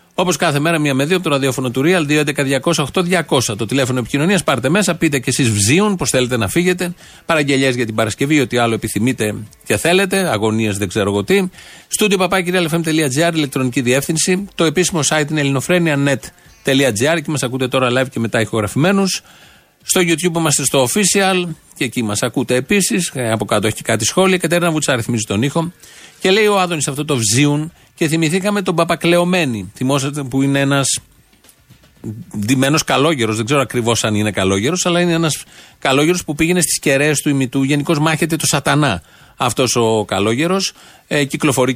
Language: Greek